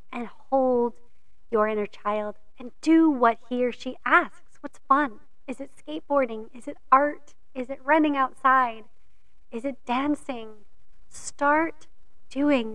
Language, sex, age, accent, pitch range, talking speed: English, female, 30-49, American, 215-260 Hz, 135 wpm